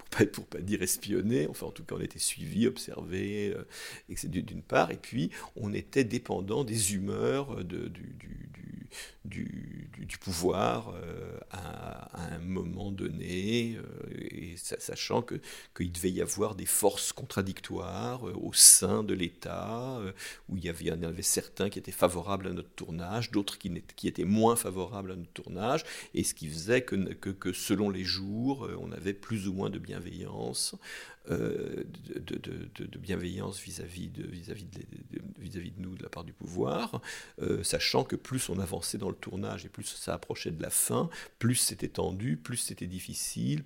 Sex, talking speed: male, 185 wpm